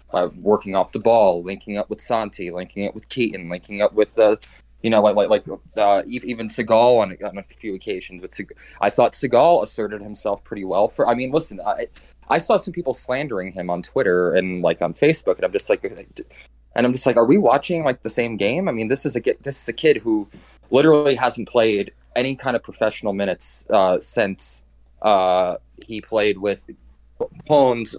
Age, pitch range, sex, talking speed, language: 20-39, 95-125 Hz, male, 210 wpm, English